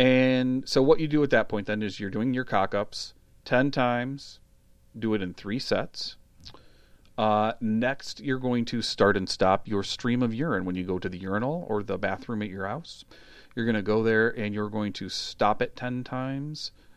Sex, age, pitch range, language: male, 40-59, 100-125 Hz, English